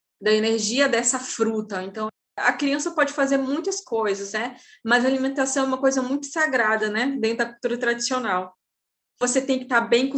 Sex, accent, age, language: female, Brazilian, 10-29, Portuguese